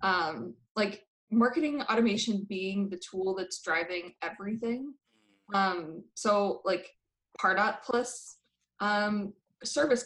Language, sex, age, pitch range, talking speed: English, female, 20-39, 185-220 Hz, 100 wpm